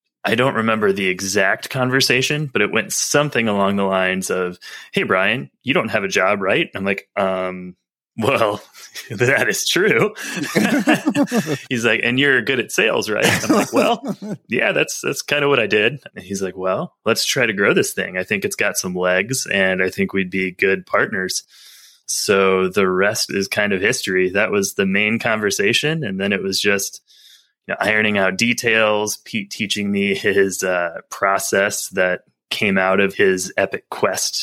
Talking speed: 180 wpm